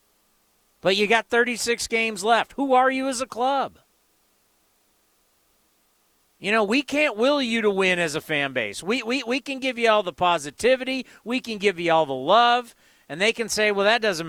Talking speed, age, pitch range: 195 wpm, 40-59, 190-240 Hz